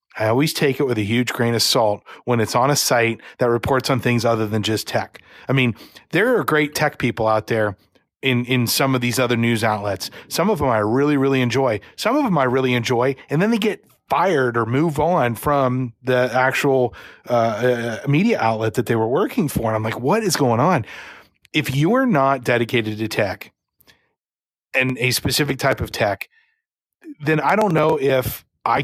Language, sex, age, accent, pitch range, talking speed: English, male, 30-49, American, 115-140 Hz, 205 wpm